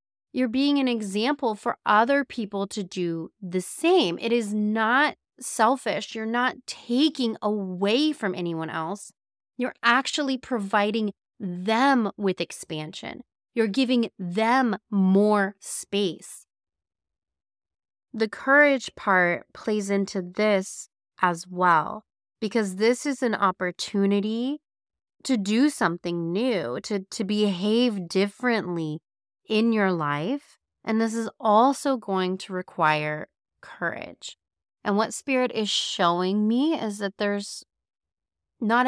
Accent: American